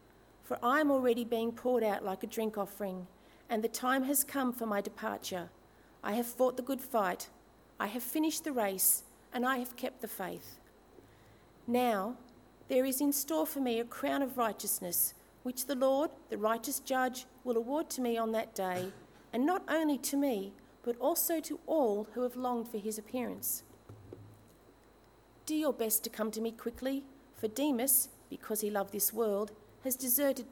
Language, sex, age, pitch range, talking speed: English, female, 40-59, 220-270 Hz, 180 wpm